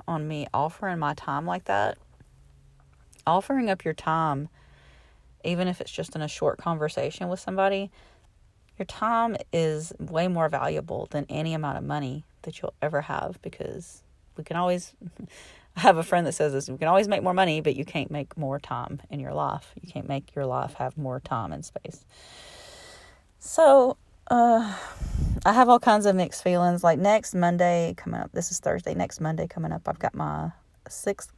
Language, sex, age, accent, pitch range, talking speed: English, female, 30-49, American, 135-180 Hz, 185 wpm